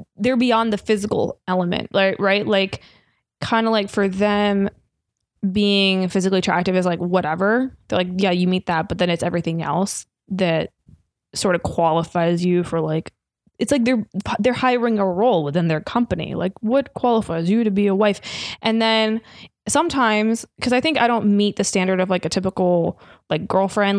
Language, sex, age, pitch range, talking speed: English, female, 20-39, 180-215 Hz, 180 wpm